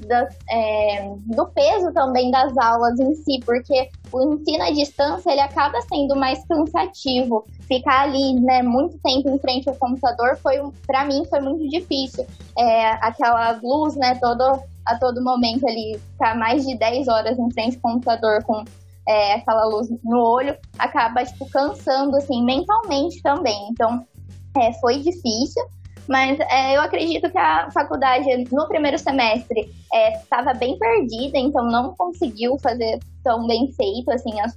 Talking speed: 160 wpm